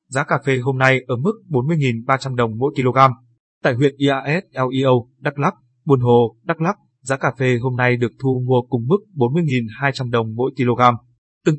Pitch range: 125-145 Hz